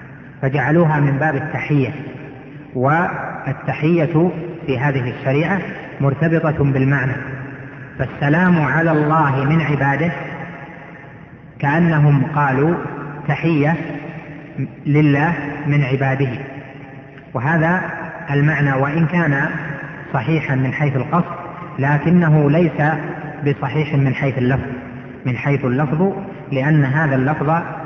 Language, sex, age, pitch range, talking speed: Arabic, female, 30-49, 135-160 Hz, 90 wpm